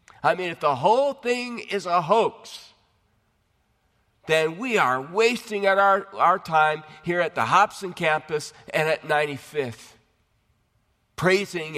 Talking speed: 125 wpm